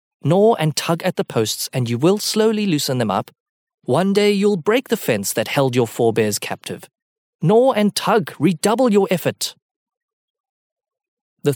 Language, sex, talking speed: English, male, 160 wpm